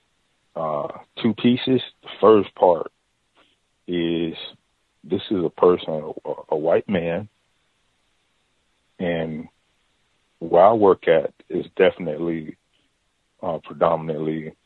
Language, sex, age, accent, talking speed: English, male, 40-59, American, 100 wpm